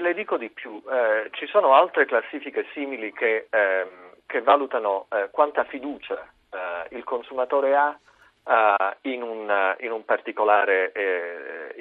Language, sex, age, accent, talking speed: Italian, male, 40-59, native, 140 wpm